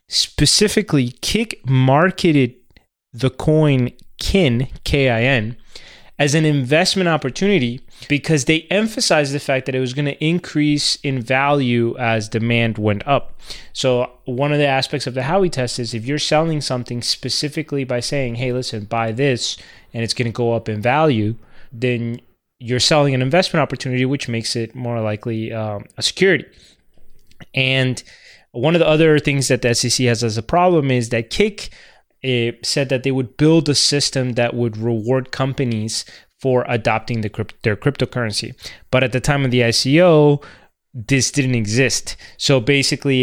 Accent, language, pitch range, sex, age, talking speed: American, English, 115-145 Hz, male, 20-39, 160 wpm